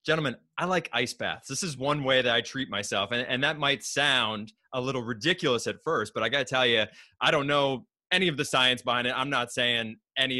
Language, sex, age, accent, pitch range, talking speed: English, male, 20-39, American, 100-125 Hz, 235 wpm